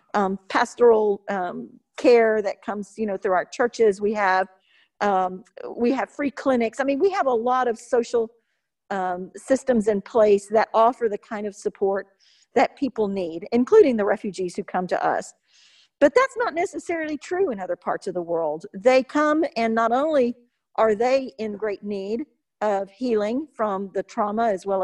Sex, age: female, 50-69